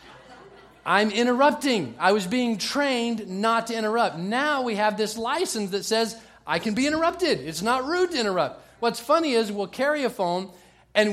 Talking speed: 180 wpm